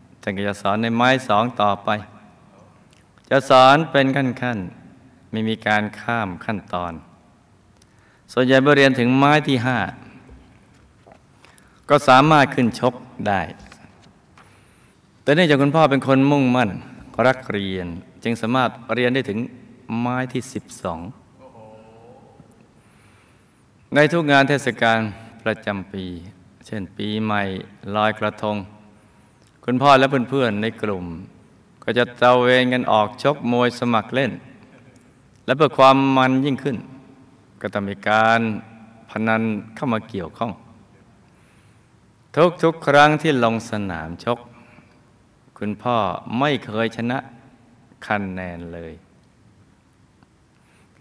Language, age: Thai, 20-39